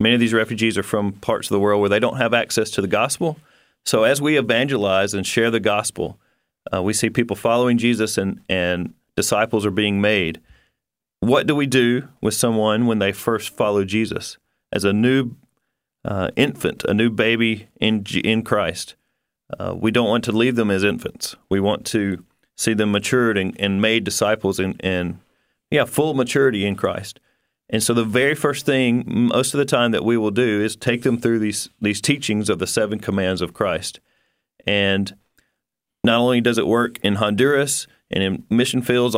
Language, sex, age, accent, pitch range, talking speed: English, male, 40-59, American, 100-120 Hz, 195 wpm